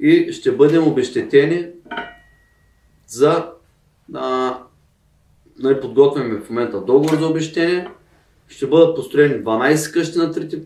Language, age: Bulgarian, 40-59